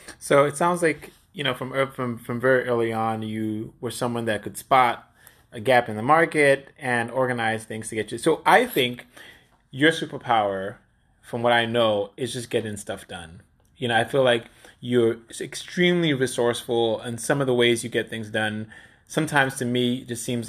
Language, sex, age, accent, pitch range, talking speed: English, male, 20-39, American, 115-135 Hz, 195 wpm